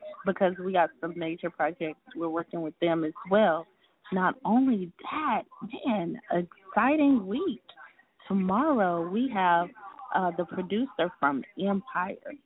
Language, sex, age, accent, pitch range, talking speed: English, female, 20-39, American, 170-210 Hz, 125 wpm